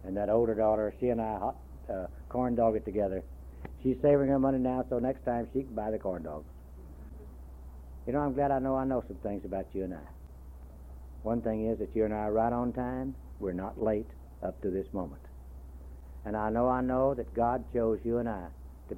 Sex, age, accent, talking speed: male, 60-79, American, 225 wpm